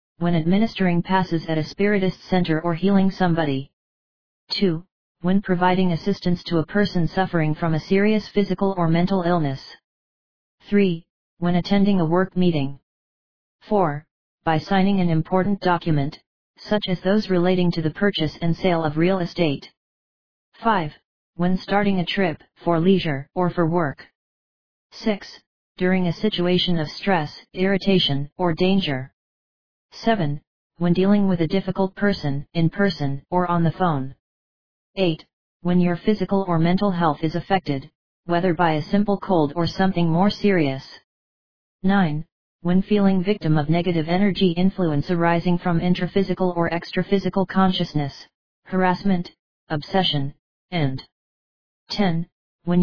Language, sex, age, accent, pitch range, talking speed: English, female, 40-59, American, 165-190 Hz, 135 wpm